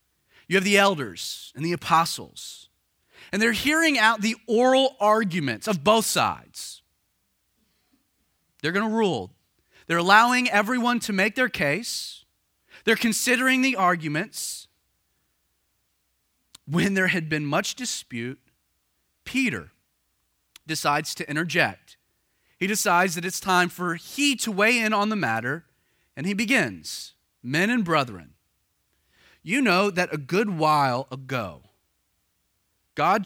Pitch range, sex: 140-220 Hz, male